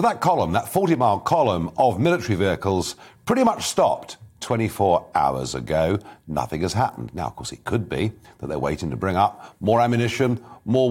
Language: English